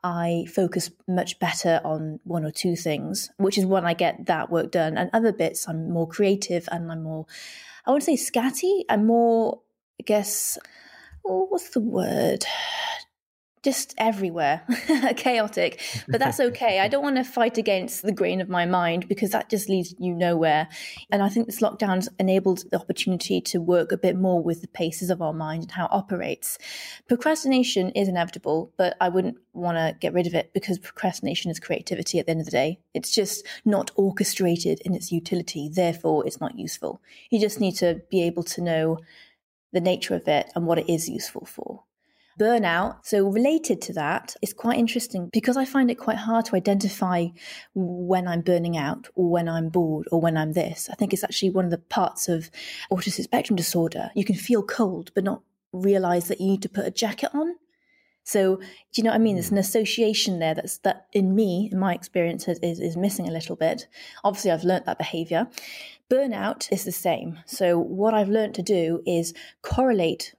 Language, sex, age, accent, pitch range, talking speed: English, female, 20-39, British, 170-220 Hz, 200 wpm